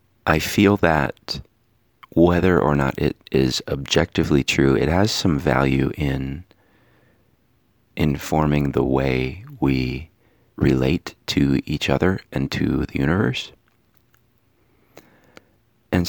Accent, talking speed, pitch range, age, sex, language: American, 105 wpm, 70-100 Hz, 30-49, male, English